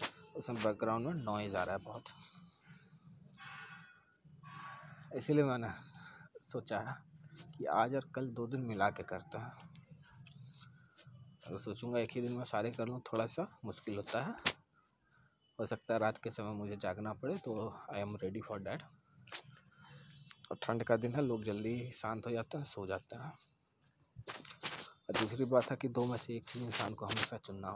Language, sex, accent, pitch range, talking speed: Hindi, male, native, 105-140 Hz, 170 wpm